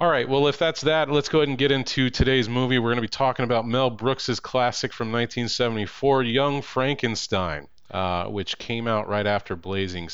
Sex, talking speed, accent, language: male, 200 wpm, American, English